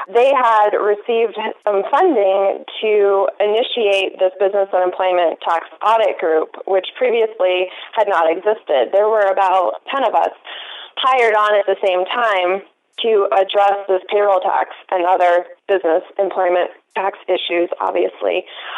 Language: English